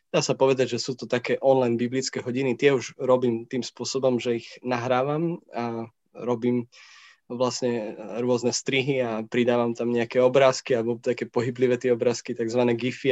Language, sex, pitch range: Slovak, male, 120-130 Hz